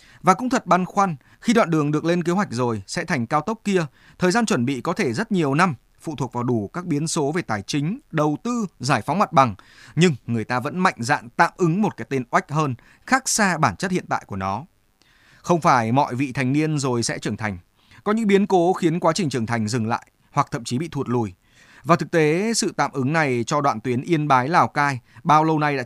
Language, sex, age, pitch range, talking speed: Vietnamese, male, 20-39, 125-175 Hz, 255 wpm